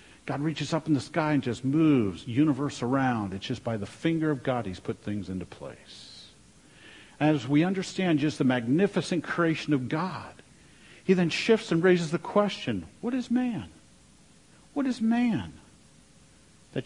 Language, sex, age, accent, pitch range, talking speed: English, male, 50-69, American, 120-160 Hz, 165 wpm